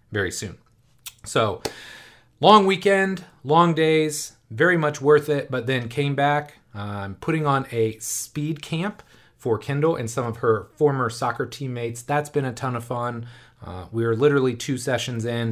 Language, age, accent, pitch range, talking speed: English, 30-49, American, 115-140 Hz, 165 wpm